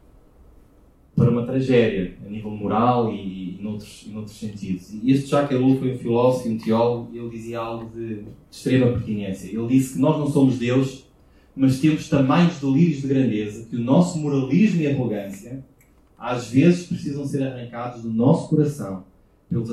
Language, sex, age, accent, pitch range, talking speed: Portuguese, male, 20-39, Portuguese, 110-145 Hz, 175 wpm